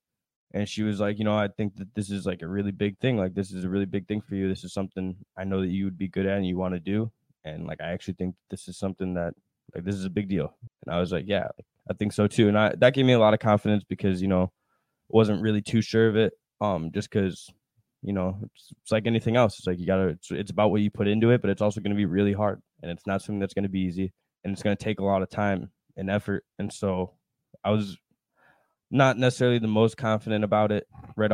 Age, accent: 10-29, American